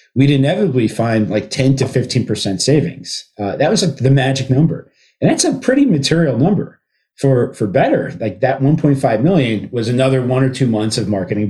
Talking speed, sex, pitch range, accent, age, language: 190 wpm, male, 110-145 Hz, American, 40-59, English